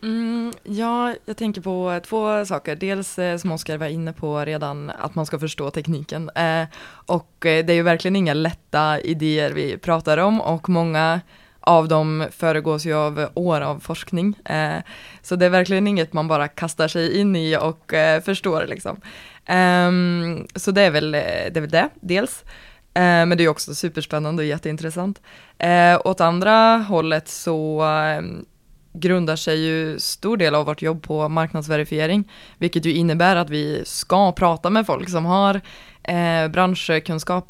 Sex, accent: female, native